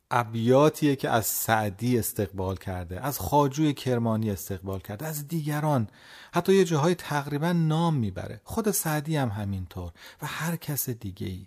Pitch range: 110-145 Hz